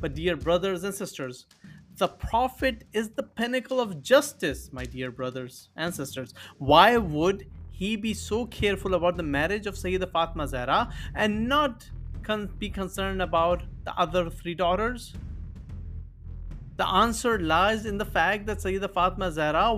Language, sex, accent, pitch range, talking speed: English, male, Indian, 155-215 Hz, 150 wpm